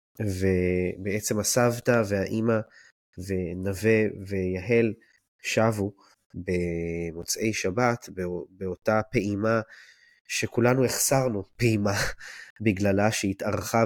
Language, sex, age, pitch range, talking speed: Hebrew, male, 20-39, 90-110 Hz, 65 wpm